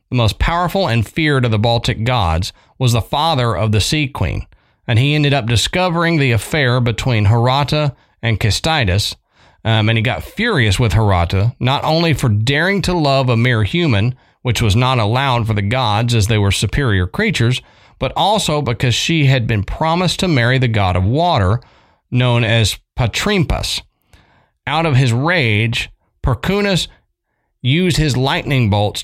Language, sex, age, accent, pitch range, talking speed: English, male, 40-59, American, 110-145 Hz, 165 wpm